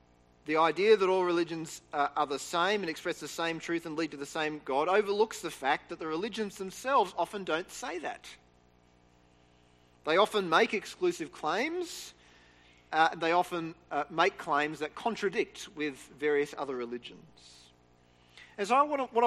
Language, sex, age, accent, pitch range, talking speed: English, male, 40-59, Australian, 145-215 Hz, 165 wpm